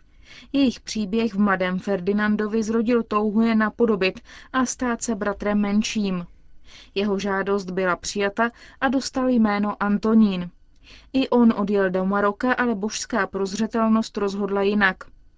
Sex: female